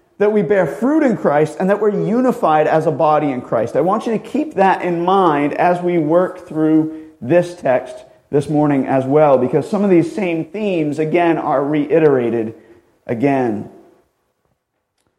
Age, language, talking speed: 40-59, English, 170 wpm